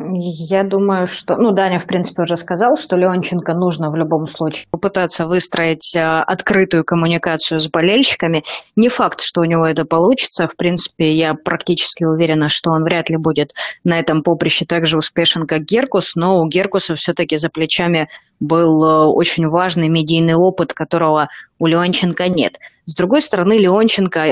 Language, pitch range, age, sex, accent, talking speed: Russian, 160-185 Hz, 20-39, female, native, 160 wpm